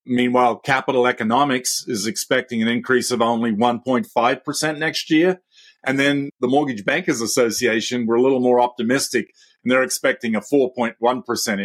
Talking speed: 145 wpm